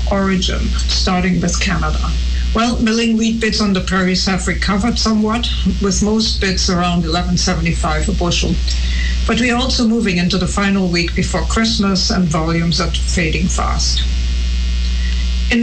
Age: 60-79